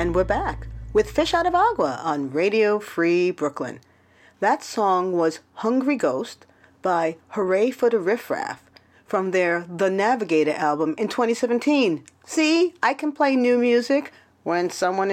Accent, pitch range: American, 175-245 Hz